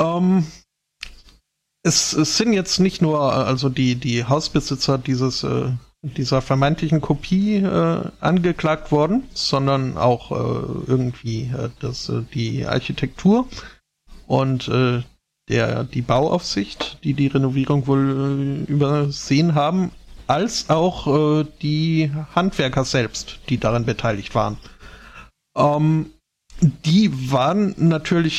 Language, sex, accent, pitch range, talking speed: German, male, German, 130-165 Hz, 115 wpm